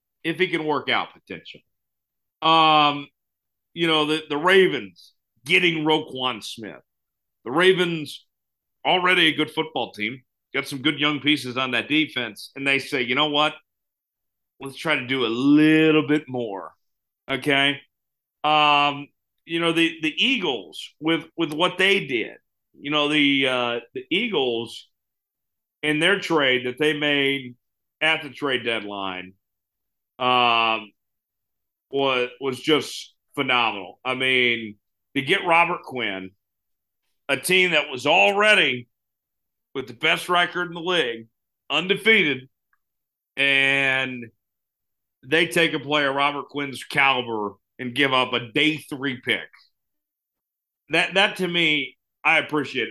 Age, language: 40-59, English